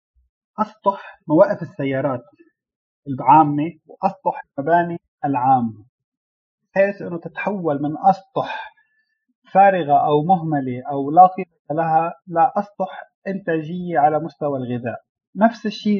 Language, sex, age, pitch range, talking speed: Arabic, male, 30-49, 150-190 Hz, 100 wpm